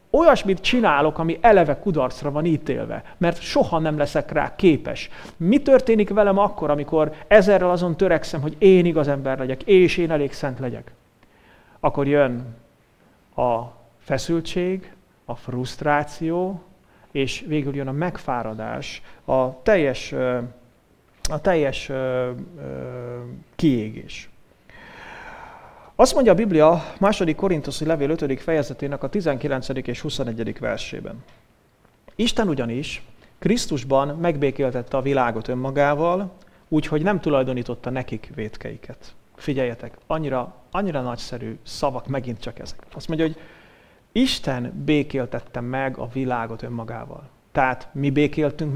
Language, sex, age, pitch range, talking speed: English, male, 30-49, 125-165 Hz, 115 wpm